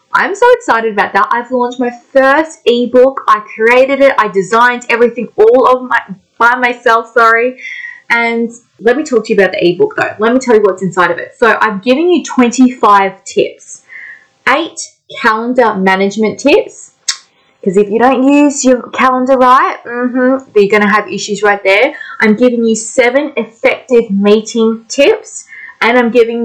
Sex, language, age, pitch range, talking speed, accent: female, English, 20-39, 195-265 Hz, 170 wpm, Australian